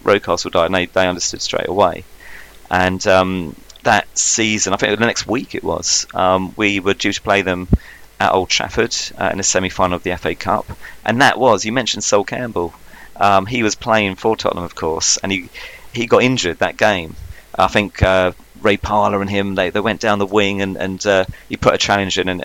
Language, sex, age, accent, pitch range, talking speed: English, male, 30-49, British, 90-105 Hz, 220 wpm